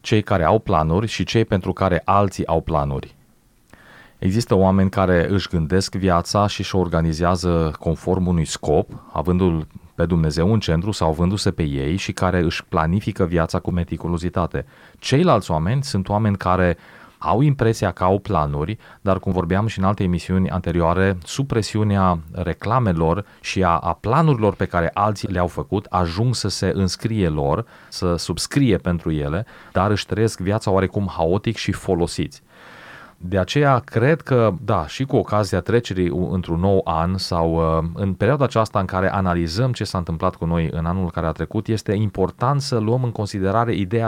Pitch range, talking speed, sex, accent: 85-105 Hz, 165 wpm, male, native